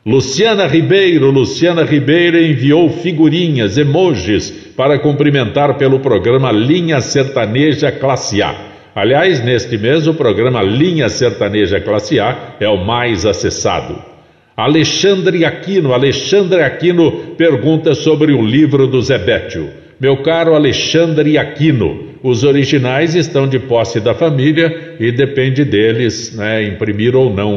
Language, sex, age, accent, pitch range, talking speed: Portuguese, male, 60-79, Brazilian, 120-155 Hz, 125 wpm